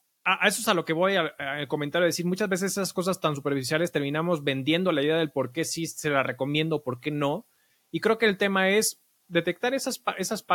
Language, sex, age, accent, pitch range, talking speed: Spanish, male, 30-49, Mexican, 145-195 Hz, 240 wpm